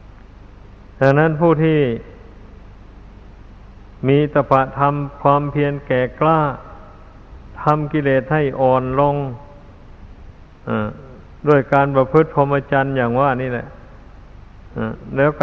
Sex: male